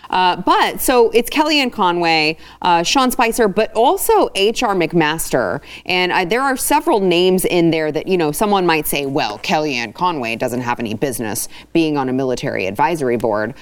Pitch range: 140-190 Hz